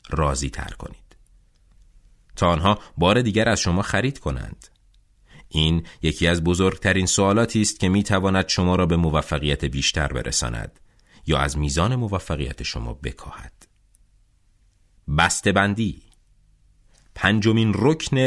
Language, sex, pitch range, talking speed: Persian, male, 75-105 Hz, 110 wpm